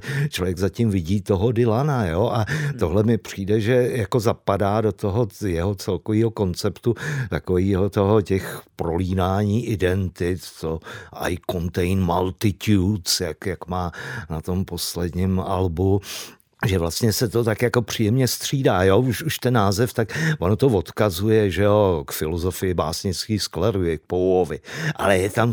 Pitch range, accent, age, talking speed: 95-120 Hz, native, 50-69, 145 wpm